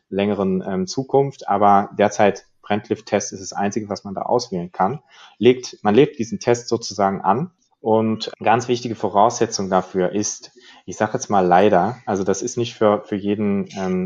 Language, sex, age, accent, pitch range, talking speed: German, male, 30-49, German, 100-115 Hz, 180 wpm